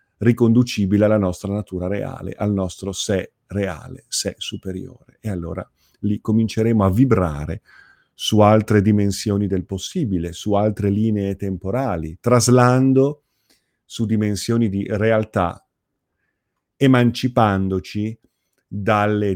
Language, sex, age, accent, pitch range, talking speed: Italian, male, 40-59, native, 95-110 Hz, 100 wpm